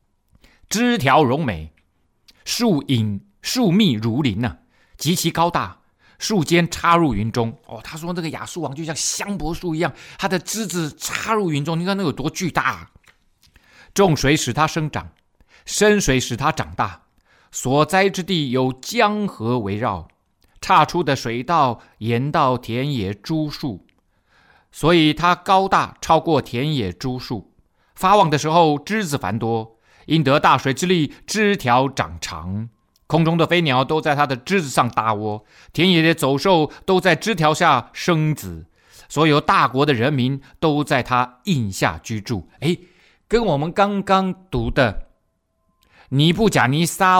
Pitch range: 120-175 Hz